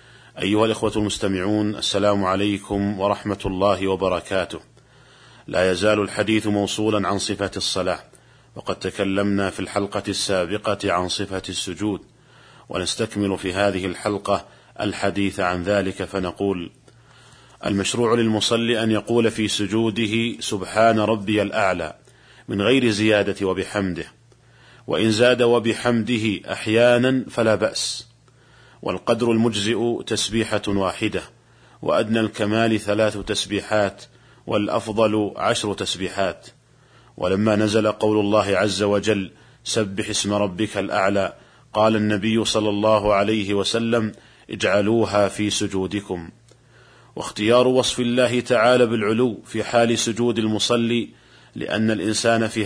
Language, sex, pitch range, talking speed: Arabic, male, 100-115 Hz, 105 wpm